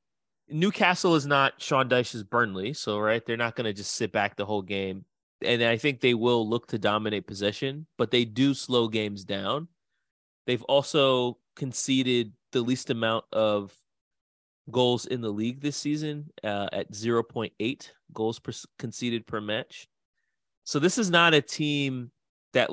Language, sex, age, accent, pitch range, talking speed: English, male, 30-49, American, 105-130 Hz, 160 wpm